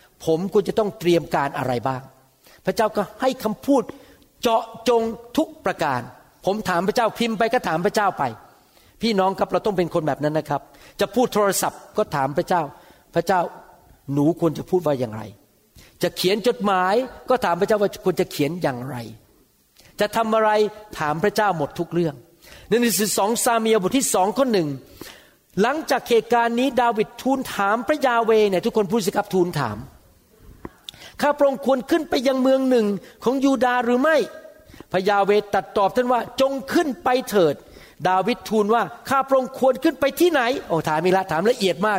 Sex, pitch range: male, 170-245 Hz